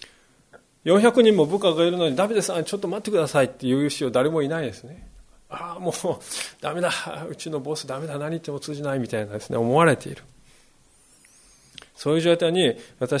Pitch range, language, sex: 130-180 Hz, Japanese, male